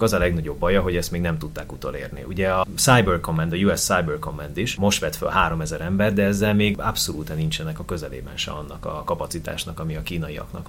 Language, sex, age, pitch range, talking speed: Hungarian, male, 30-49, 80-100 Hz, 215 wpm